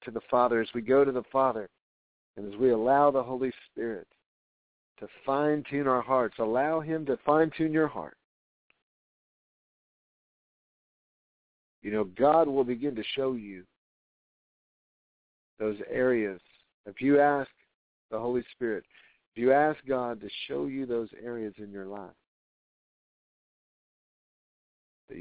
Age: 50-69